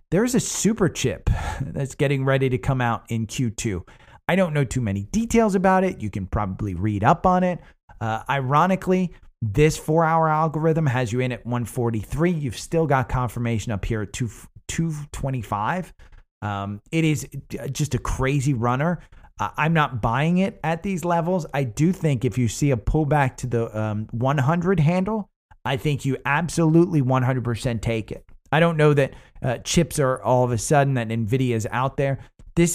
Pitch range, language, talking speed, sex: 115-155 Hz, English, 180 wpm, male